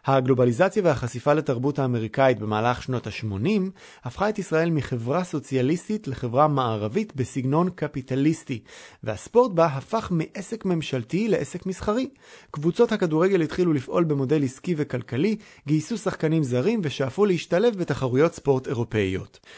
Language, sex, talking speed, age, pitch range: Hebrew, male, 115 wpm, 30-49, 130-170 Hz